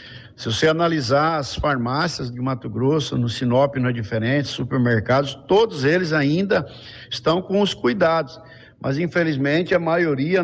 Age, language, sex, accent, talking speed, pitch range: 60-79, Portuguese, male, Brazilian, 145 wpm, 130-165 Hz